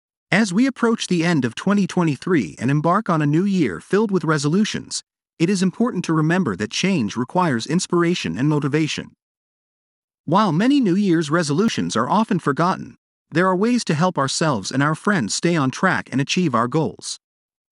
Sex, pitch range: male, 150-200 Hz